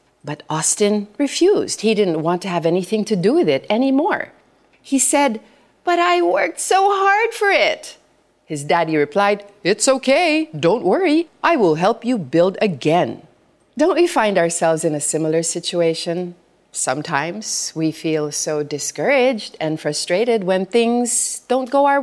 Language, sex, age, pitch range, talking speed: Filipino, female, 40-59, 160-250 Hz, 155 wpm